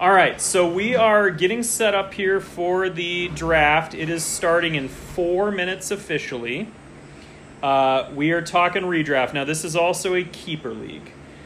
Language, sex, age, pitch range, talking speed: English, male, 30-49, 120-170 Hz, 160 wpm